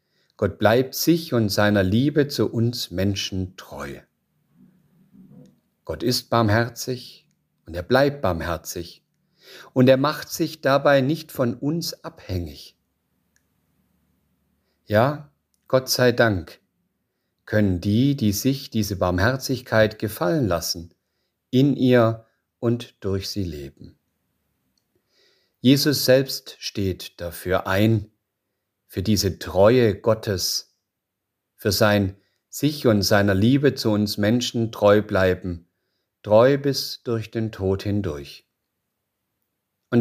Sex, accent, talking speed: male, German, 105 wpm